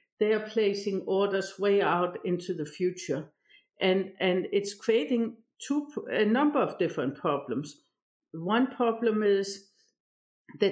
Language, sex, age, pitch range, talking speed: English, female, 60-79, 180-220 Hz, 130 wpm